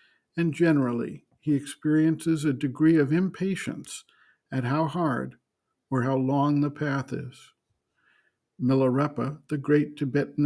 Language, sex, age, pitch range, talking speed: English, male, 50-69, 135-155 Hz, 120 wpm